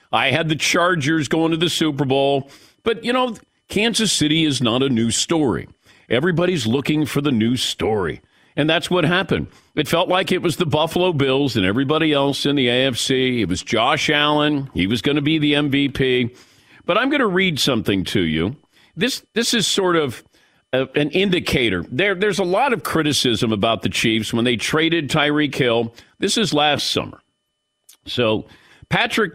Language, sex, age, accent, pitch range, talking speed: English, male, 50-69, American, 125-160 Hz, 185 wpm